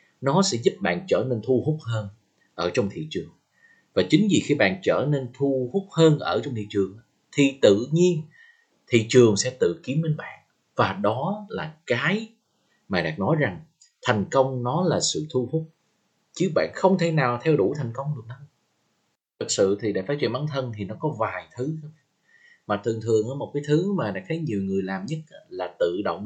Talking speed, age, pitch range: 210 wpm, 20-39, 115-175 Hz